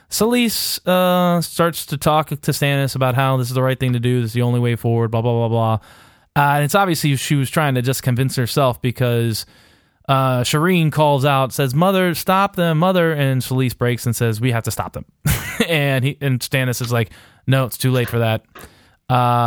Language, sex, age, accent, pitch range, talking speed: English, male, 20-39, American, 120-145 Hz, 215 wpm